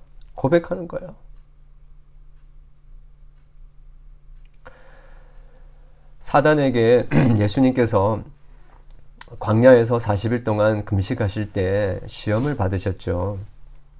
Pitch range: 100-145 Hz